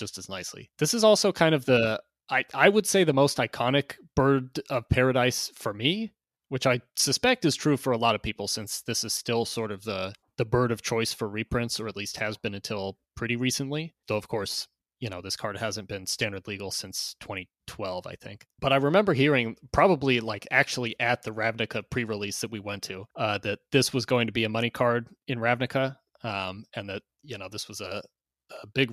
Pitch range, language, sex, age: 110-135 Hz, English, male, 30-49